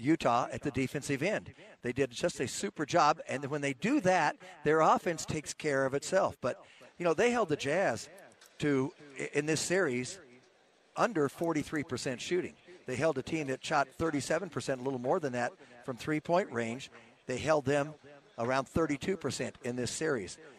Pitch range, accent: 130-160 Hz, American